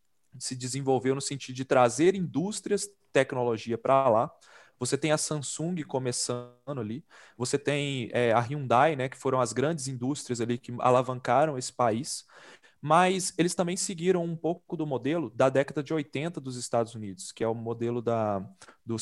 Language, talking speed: Portuguese, 160 wpm